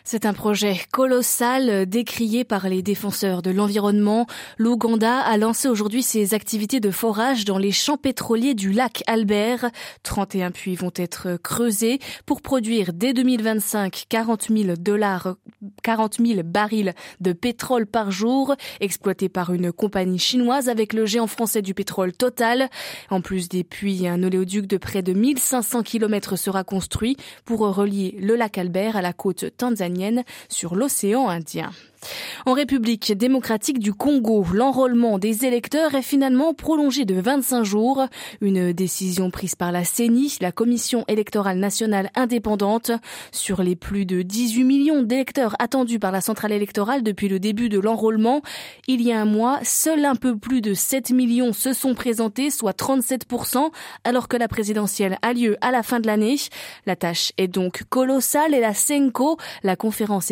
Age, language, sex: 20-39, French, female